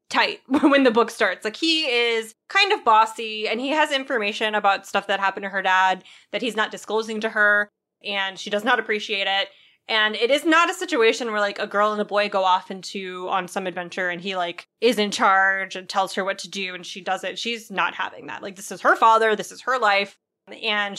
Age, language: 20-39, English